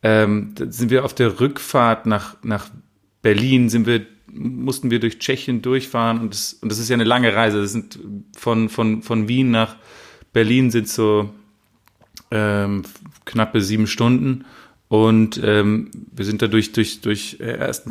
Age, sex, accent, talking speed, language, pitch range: 30-49, male, German, 170 wpm, German, 110-135 Hz